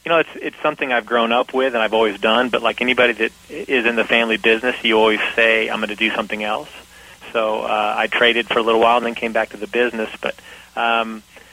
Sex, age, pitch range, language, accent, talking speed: male, 30-49, 115-125 Hz, English, American, 250 wpm